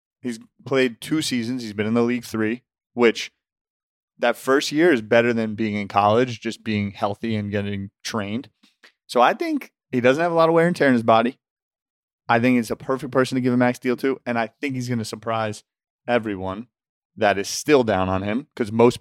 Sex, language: male, English